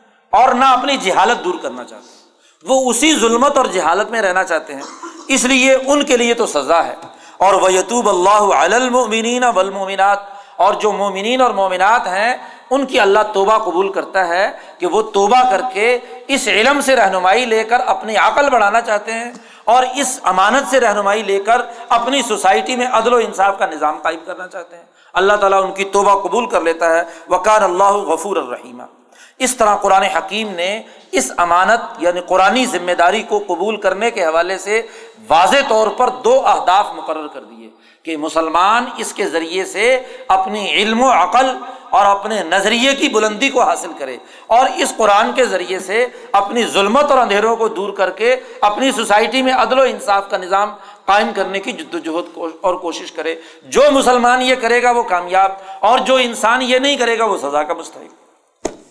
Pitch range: 190-250 Hz